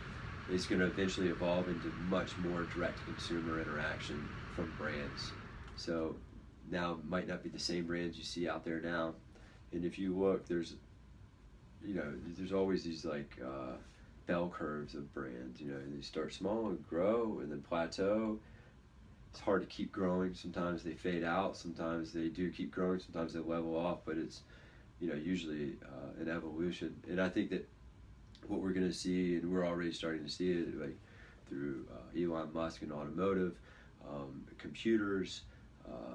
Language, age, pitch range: English, 30-49, 80-90 Hz